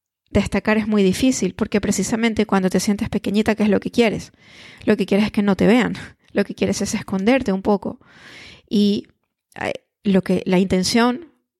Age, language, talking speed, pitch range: 20-39, Spanish, 180 wpm, 195-230 Hz